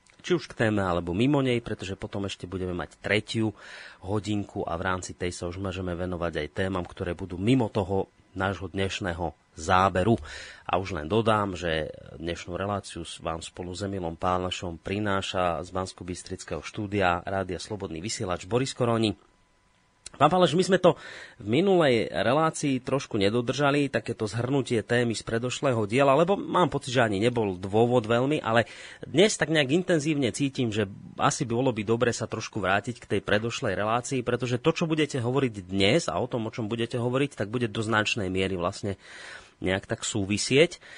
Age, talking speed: 30-49, 170 wpm